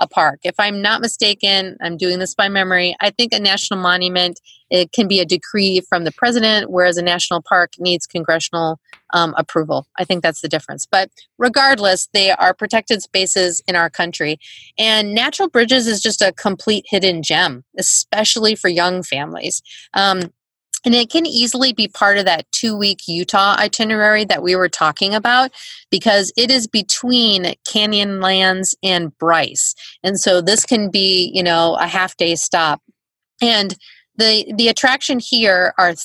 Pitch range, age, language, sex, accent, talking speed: 180-220 Hz, 30-49, English, female, American, 165 wpm